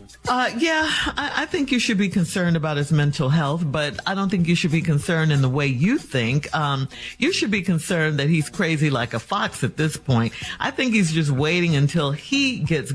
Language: English